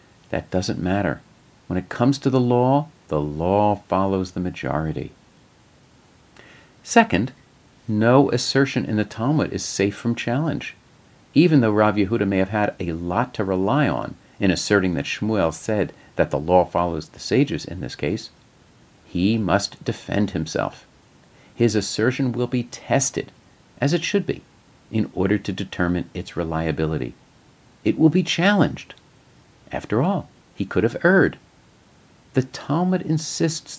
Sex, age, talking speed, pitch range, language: male, 50-69, 145 wpm, 90-135 Hz, English